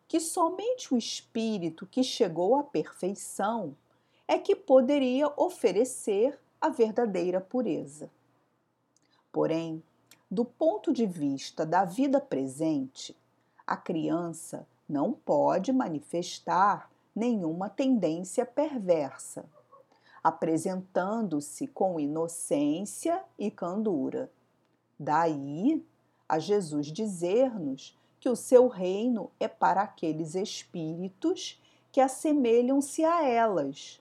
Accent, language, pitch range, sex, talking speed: Brazilian, Portuguese, 170-275 Hz, female, 90 wpm